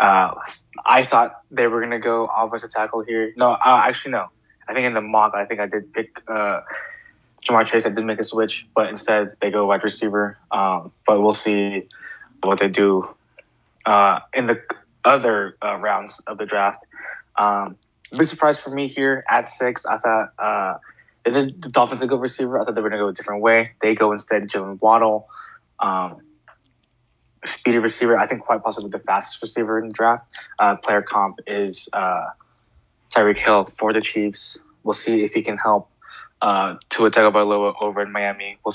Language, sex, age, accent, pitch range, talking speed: English, male, 20-39, American, 105-120 Hz, 190 wpm